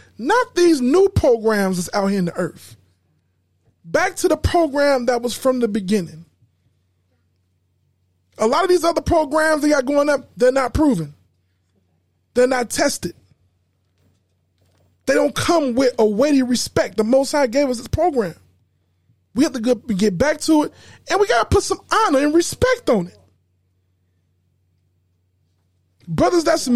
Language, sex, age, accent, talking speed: English, male, 20-39, American, 155 wpm